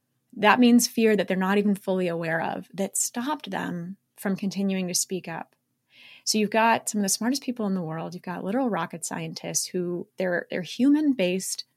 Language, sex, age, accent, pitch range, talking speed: English, female, 20-39, American, 175-225 Hz, 195 wpm